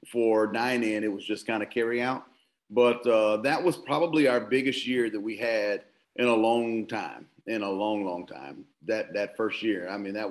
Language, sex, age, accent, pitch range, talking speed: English, male, 40-59, American, 110-125 Hz, 215 wpm